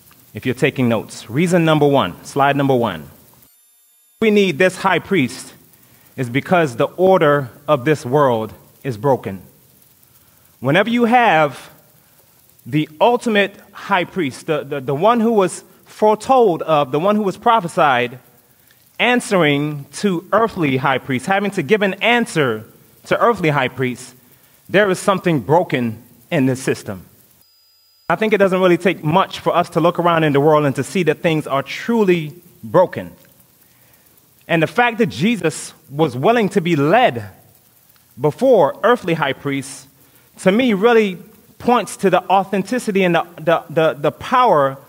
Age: 30-49